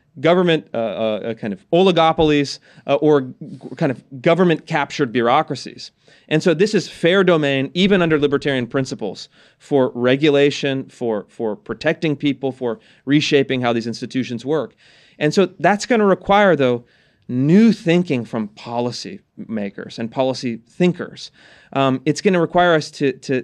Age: 30-49